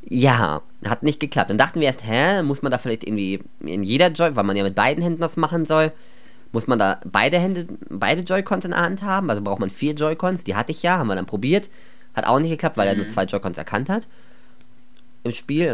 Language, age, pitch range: German, 20-39, 105-155 Hz